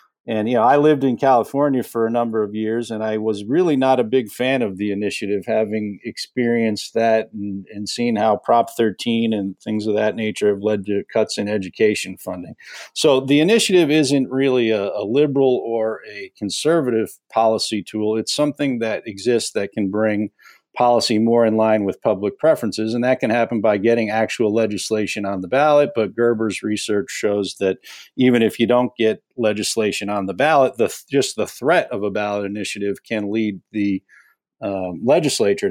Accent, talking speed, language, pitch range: American, 180 wpm, English, 105-120 Hz